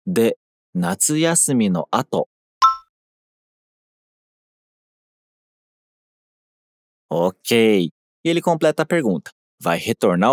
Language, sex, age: Japanese, male, 40-59